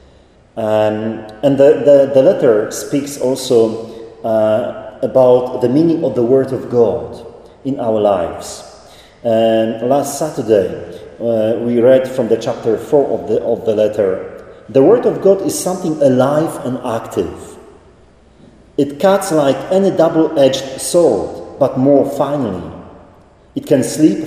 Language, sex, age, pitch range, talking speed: English, male, 40-59, 115-145 Hz, 135 wpm